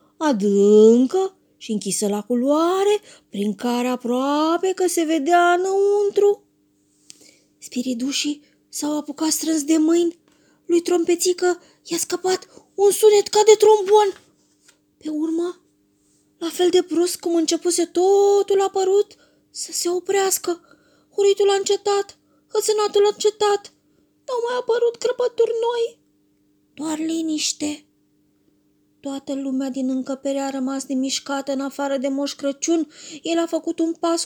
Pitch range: 270-380 Hz